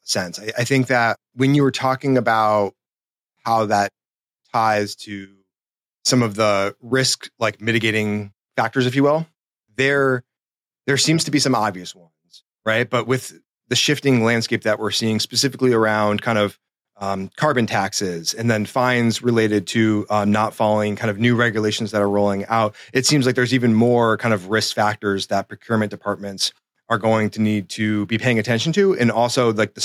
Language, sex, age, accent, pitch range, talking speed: English, male, 30-49, American, 105-120 Hz, 180 wpm